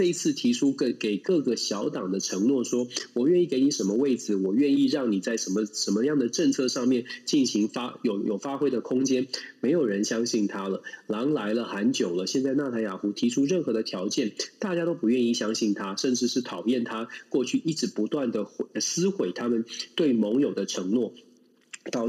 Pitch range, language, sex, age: 115-165 Hz, Chinese, male, 20-39